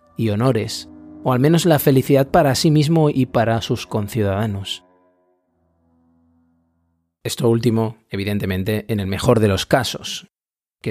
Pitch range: 110-140 Hz